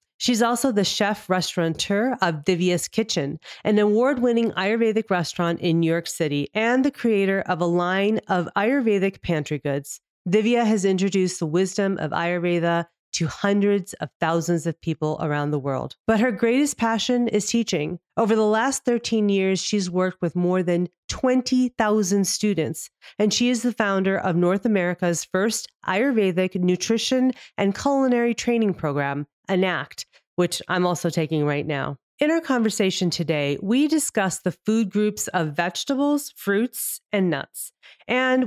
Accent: American